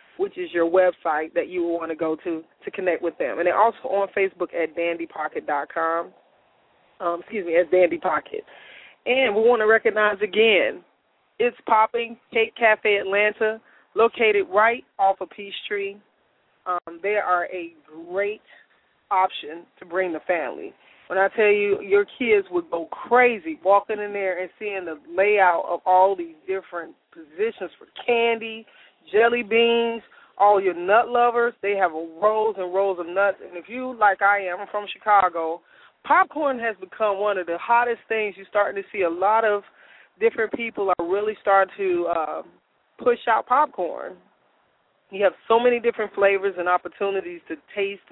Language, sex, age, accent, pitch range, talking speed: English, female, 20-39, American, 185-230 Hz, 165 wpm